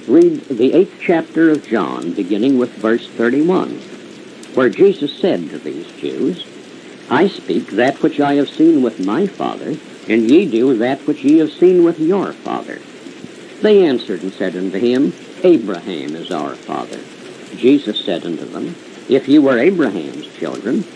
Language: English